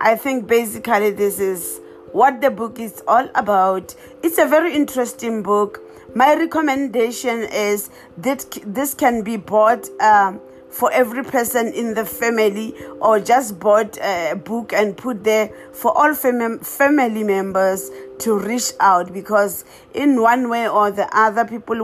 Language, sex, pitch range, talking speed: English, female, 205-245 Hz, 150 wpm